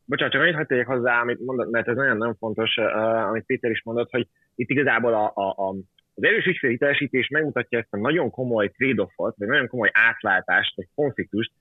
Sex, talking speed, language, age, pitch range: male, 200 wpm, Hungarian, 30-49, 105-140 Hz